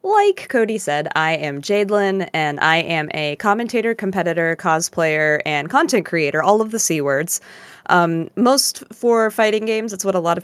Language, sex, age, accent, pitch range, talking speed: English, female, 20-39, American, 155-195 Hz, 170 wpm